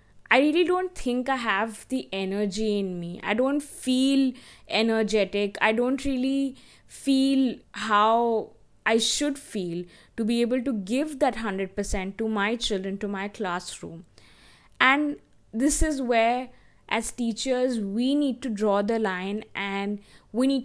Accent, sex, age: Indian, female, 20-39